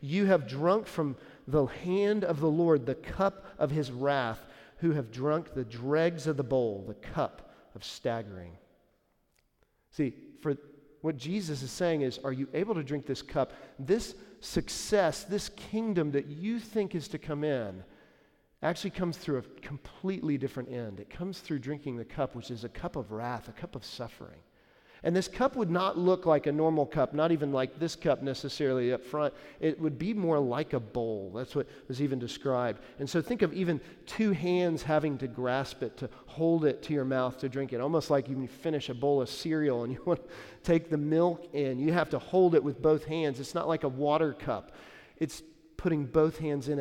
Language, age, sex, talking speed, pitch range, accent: English, 40-59, male, 205 wpm, 130-165 Hz, American